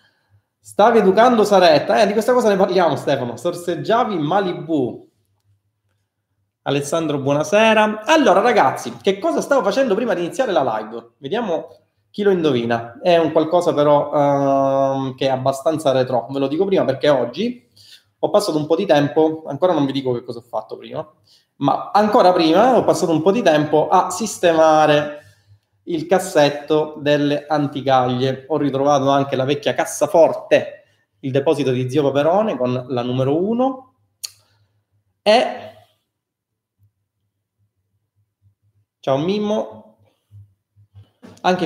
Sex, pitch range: male, 110-170 Hz